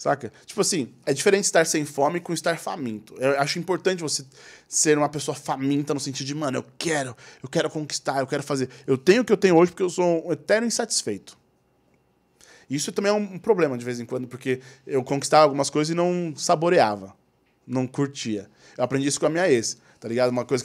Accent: Brazilian